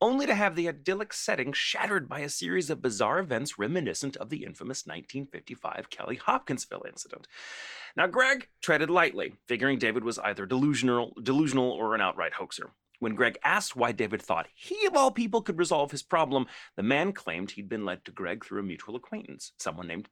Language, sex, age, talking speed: English, male, 30-49, 190 wpm